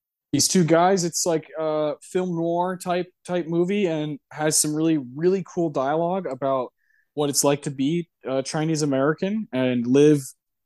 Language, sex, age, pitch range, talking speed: English, male, 20-39, 130-175 Hz, 160 wpm